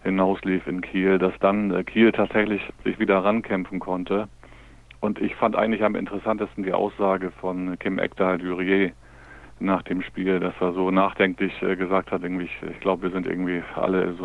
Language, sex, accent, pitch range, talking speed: German, male, German, 90-100 Hz, 170 wpm